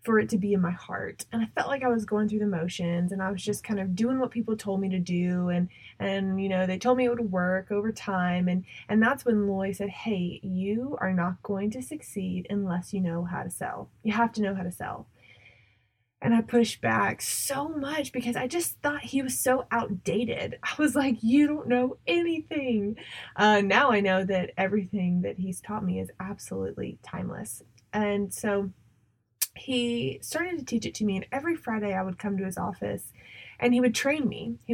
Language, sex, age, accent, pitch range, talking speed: English, female, 20-39, American, 185-235 Hz, 220 wpm